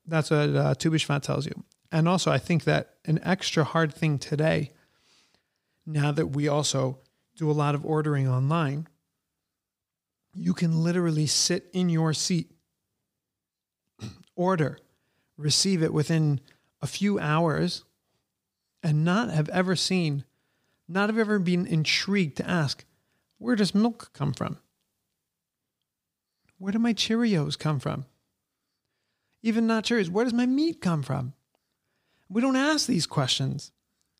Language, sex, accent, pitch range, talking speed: English, male, American, 150-190 Hz, 135 wpm